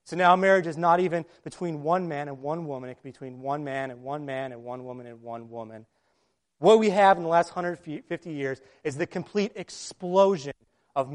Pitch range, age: 145-205 Hz, 30-49